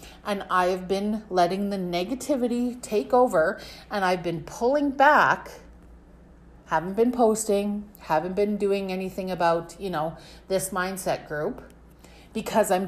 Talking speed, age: 130 wpm, 40-59